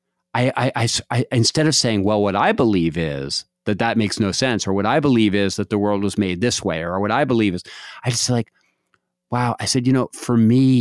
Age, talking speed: 40-59, 245 wpm